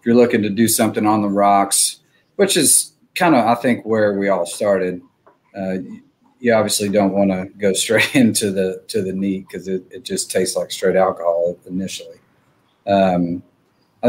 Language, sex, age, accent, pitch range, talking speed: English, male, 40-59, American, 90-105 Hz, 185 wpm